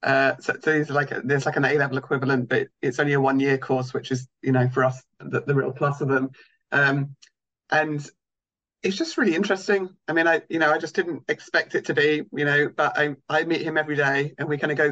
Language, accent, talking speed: English, British, 245 wpm